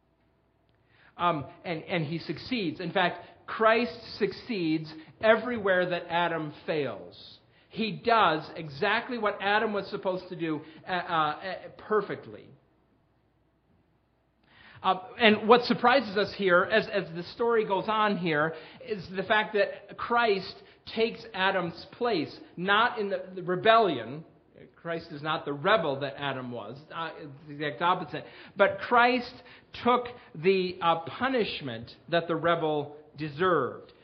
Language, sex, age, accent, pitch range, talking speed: English, male, 40-59, American, 165-215 Hz, 130 wpm